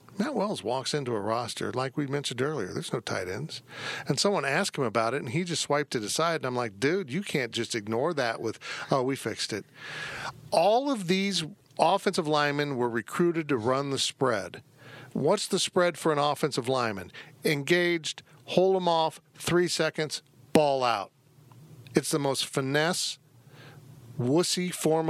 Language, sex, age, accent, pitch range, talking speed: English, male, 50-69, American, 125-160 Hz, 170 wpm